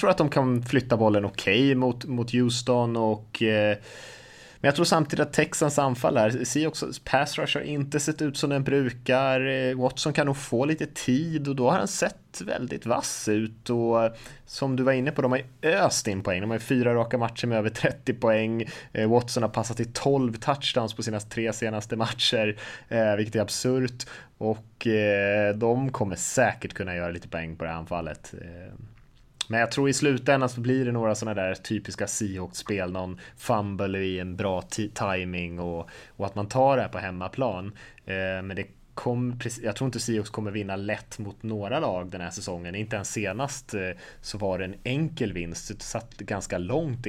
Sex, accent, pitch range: male, Norwegian, 100-130 Hz